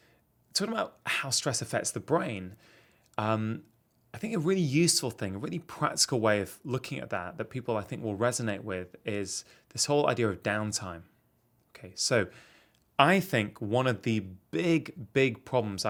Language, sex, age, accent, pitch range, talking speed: English, male, 20-39, British, 105-140 Hz, 170 wpm